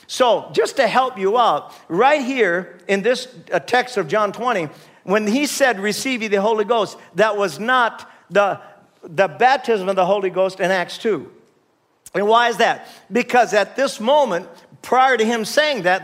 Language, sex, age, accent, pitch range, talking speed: English, male, 50-69, American, 195-255 Hz, 180 wpm